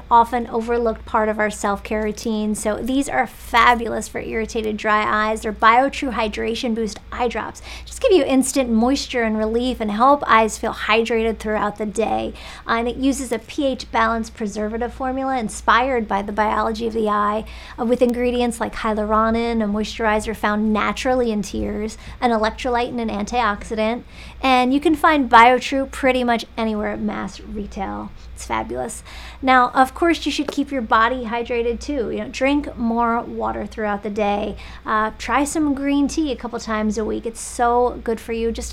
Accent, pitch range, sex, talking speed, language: American, 215-255 Hz, female, 180 wpm, English